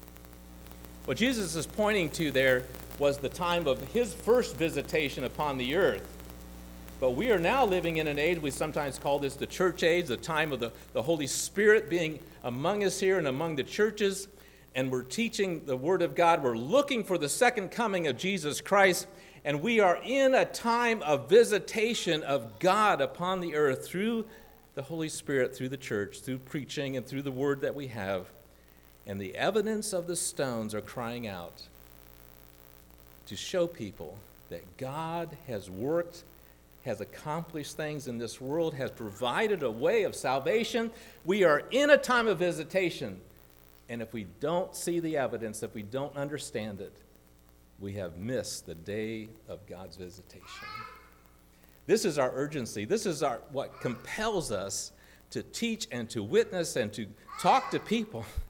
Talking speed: 170 wpm